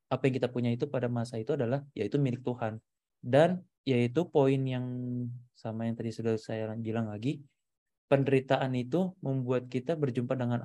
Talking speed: 165 wpm